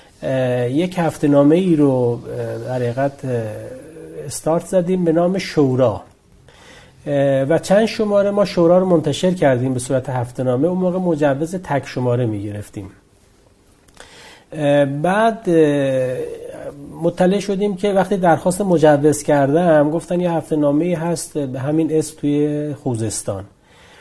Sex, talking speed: male, 120 wpm